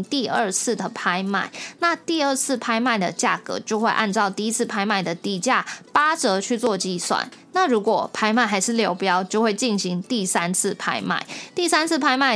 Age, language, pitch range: 20-39, Chinese, 200-255 Hz